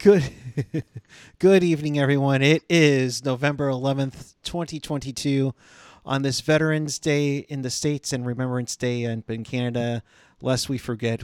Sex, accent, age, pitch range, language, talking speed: male, American, 30-49, 125-155 Hz, English, 130 wpm